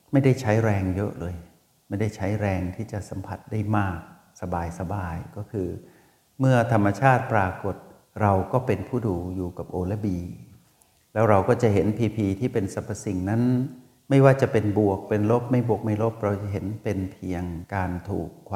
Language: Thai